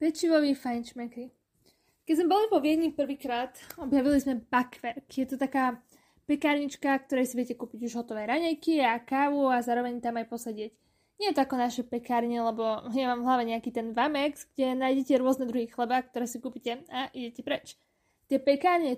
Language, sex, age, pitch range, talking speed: Slovak, female, 20-39, 240-285 Hz, 185 wpm